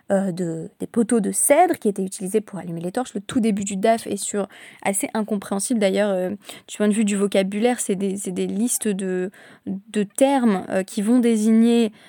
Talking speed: 210 wpm